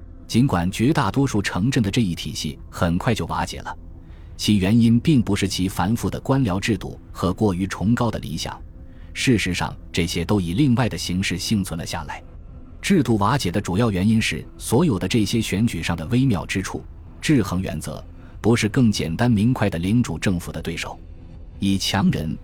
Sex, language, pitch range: male, Chinese, 85-110 Hz